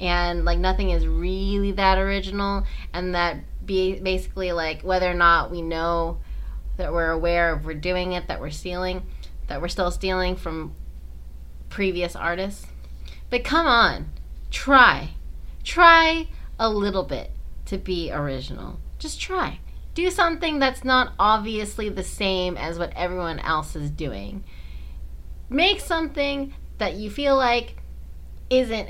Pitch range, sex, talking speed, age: 160-235 Hz, female, 140 wpm, 20-39